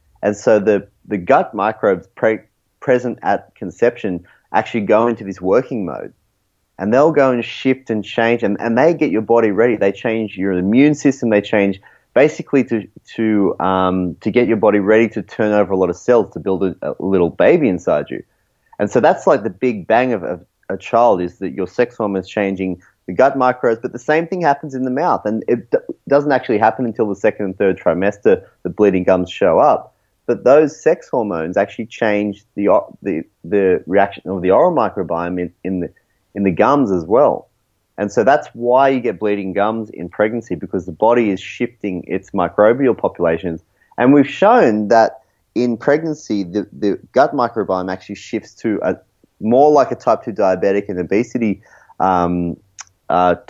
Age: 30-49